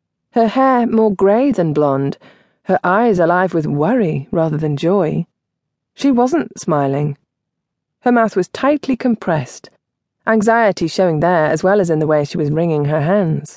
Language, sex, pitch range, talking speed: English, female, 160-235 Hz, 160 wpm